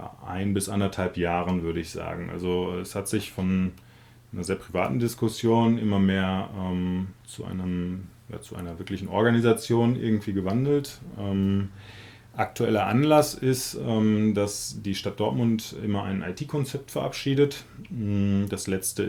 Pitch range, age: 95-115 Hz, 30-49